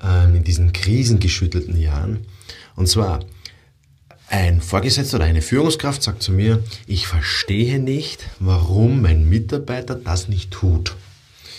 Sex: male